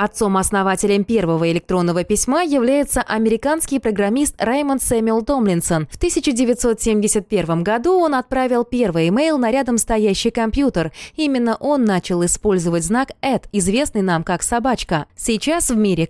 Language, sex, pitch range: Russian, female, 175-240 Hz